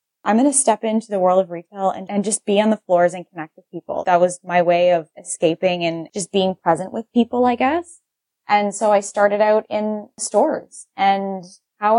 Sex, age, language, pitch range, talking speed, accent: female, 20-39, English, 175-210 Hz, 210 wpm, American